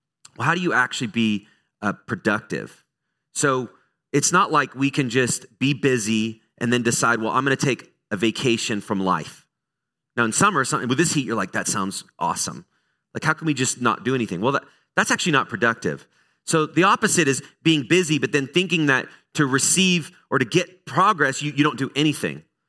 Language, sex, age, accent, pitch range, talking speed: English, male, 30-49, American, 110-150 Hz, 195 wpm